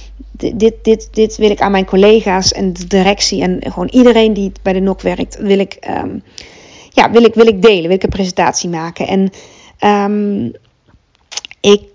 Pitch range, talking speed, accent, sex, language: 190-225 Hz, 180 wpm, Dutch, female, Dutch